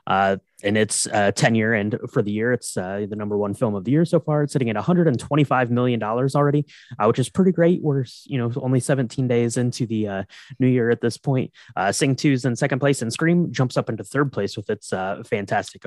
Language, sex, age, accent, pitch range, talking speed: English, male, 20-39, American, 120-155 Hz, 240 wpm